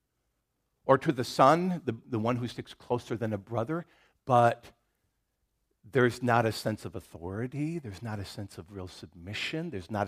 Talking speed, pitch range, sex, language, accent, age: 175 wpm, 110-155 Hz, male, English, American, 50-69